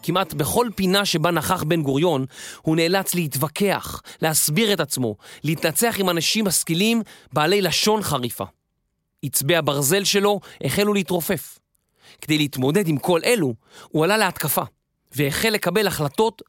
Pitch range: 145-200 Hz